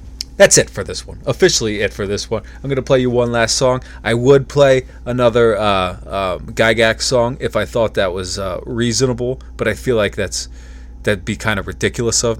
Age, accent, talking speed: 30-49, American, 220 wpm